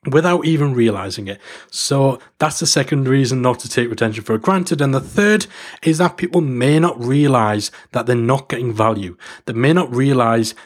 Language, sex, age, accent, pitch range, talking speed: English, male, 30-49, British, 120-150 Hz, 185 wpm